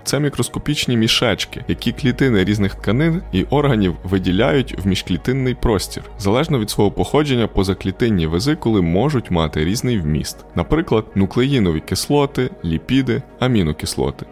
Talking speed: 115 wpm